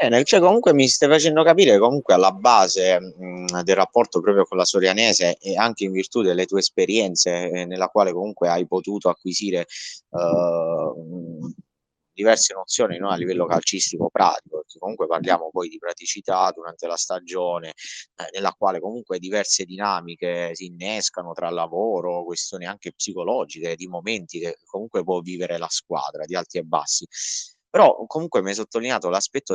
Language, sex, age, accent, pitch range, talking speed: Italian, male, 30-49, native, 90-120 Hz, 155 wpm